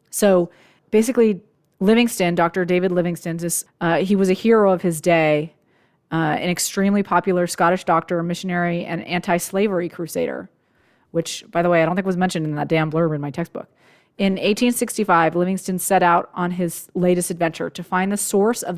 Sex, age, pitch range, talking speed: female, 30-49, 170-195 Hz, 175 wpm